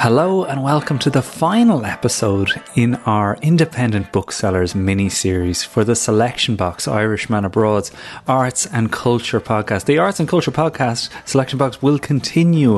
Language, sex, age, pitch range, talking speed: English, male, 30-49, 100-130 Hz, 145 wpm